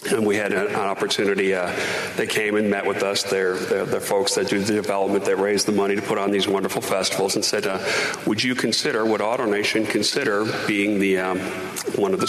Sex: male